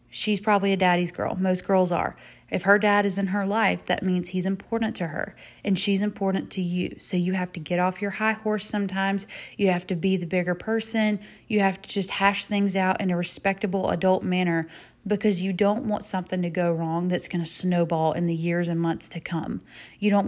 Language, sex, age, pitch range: English, female, 30-49, 175-200 Hz